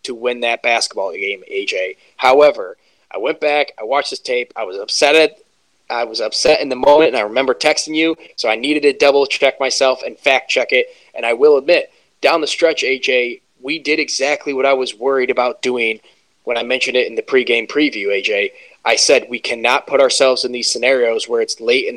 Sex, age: male, 20-39